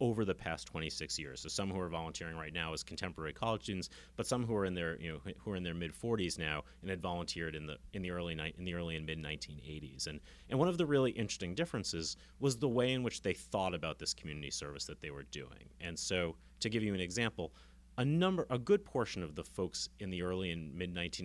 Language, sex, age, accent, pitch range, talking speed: English, male, 30-49, American, 75-100 Hz, 250 wpm